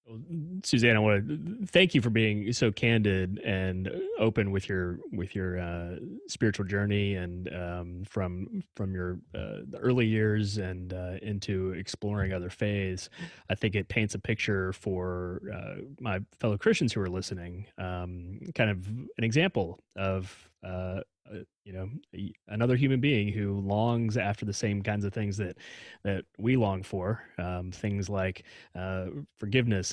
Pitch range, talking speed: 95-110 Hz, 160 wpm